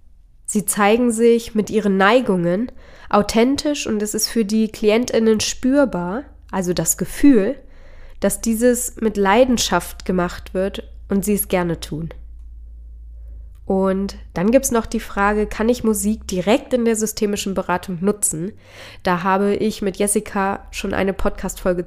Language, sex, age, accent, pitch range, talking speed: German, female, 20-39, German, 180-225 Hz, 145 wpm